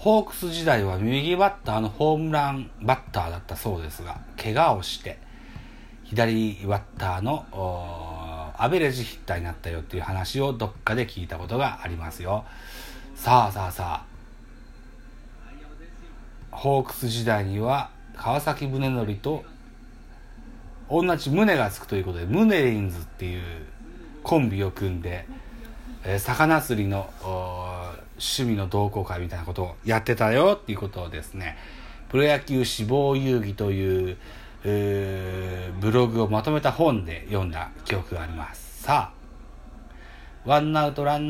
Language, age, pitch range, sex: Japanese, 40-59, 90-135 Hz, male